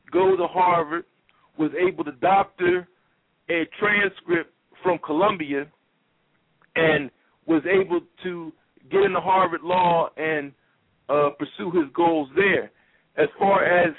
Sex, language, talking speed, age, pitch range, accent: male, English, 120 wpm, 50-69, 155-190 Hz, American